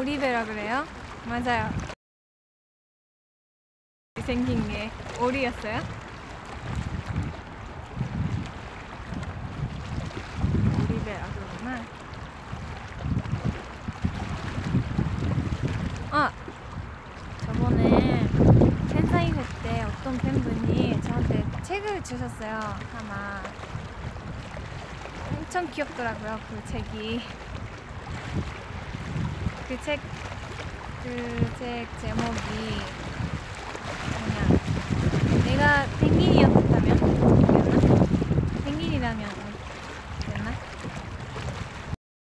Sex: female